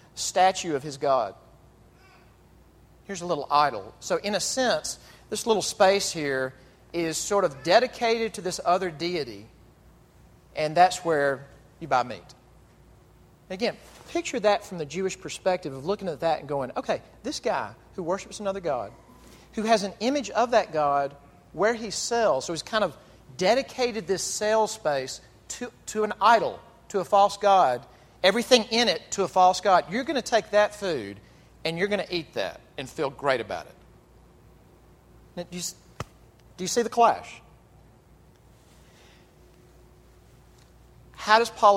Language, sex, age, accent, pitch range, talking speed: English, male, 40-59, American, 140-210 Hz, 155 wpm